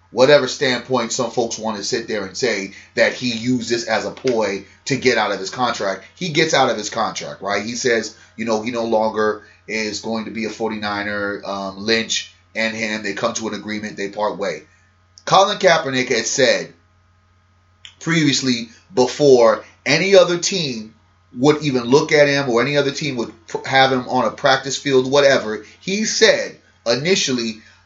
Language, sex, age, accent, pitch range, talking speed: English, male, 30-49, American, 105-145 Hz, 180 wpm